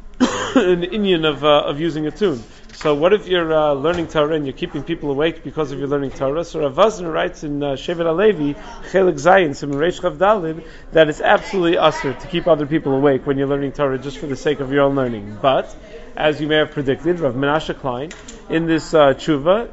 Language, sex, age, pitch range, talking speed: English, male, 40-59, 155-205 Hz, 205 wpm